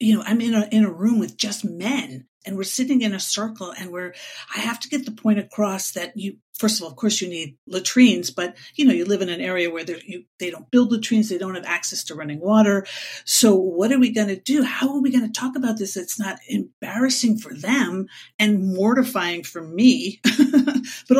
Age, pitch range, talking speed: 50-69, 185-250 Hz, 230 wpm